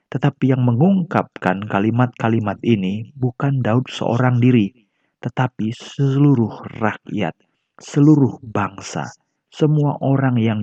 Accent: native